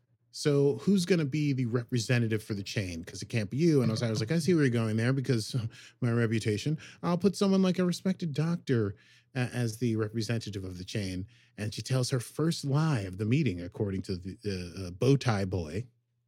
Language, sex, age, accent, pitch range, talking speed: English, male, 30-49, American, 110-140 Hz, 215 wpm